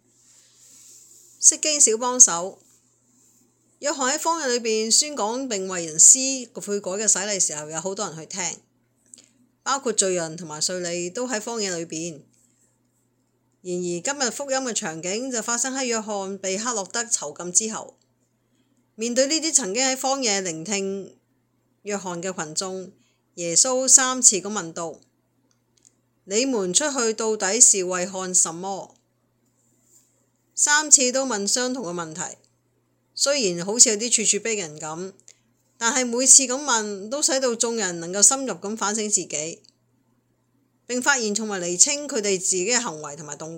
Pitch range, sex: 160-235 Hz, female